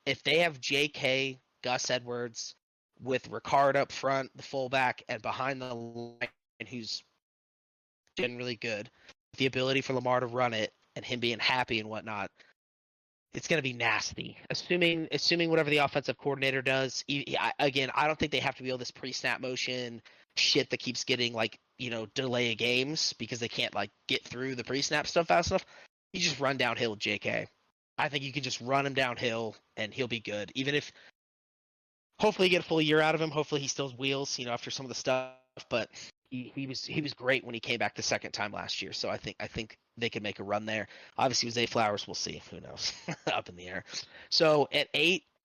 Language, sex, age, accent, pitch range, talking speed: English, male, 20-39, American, 115-140 Hz, 220 wpm